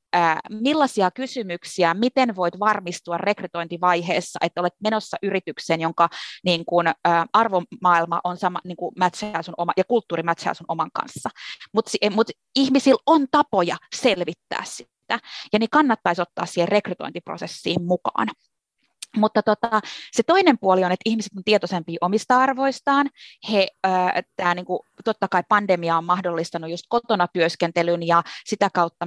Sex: female